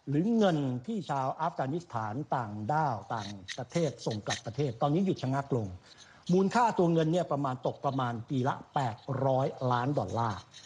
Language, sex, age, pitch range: Thai, male, 60-79, 130-175 Hz